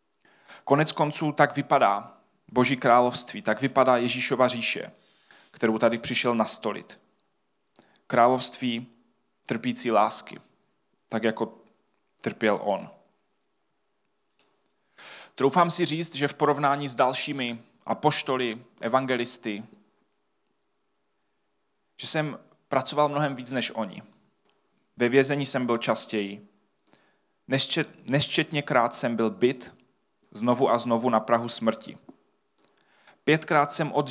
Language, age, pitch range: Czech, 30-49, 115-135 Hz